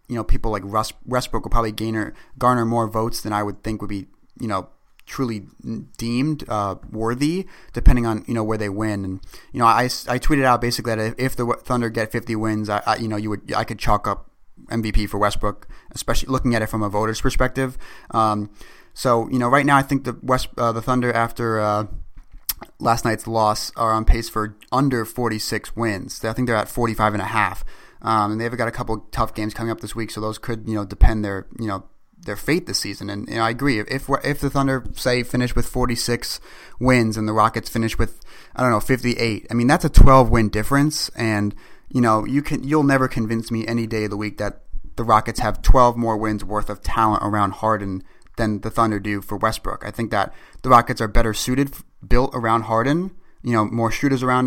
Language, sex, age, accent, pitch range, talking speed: English, male, 30-49, American, 105-125 Hz, 225 wpm